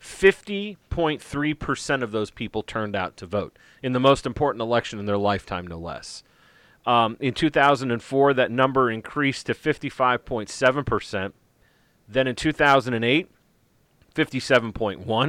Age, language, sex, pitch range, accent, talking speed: 30-49, English, male, 110-135 Hz, American, 115 wpm